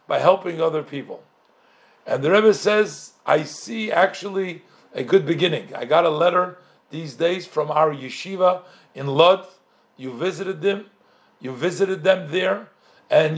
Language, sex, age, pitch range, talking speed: English, male, 50-69, 160-210 Hz, 150 wpm